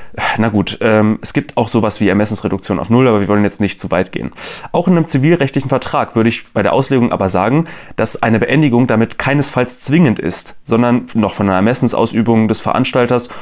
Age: 30-49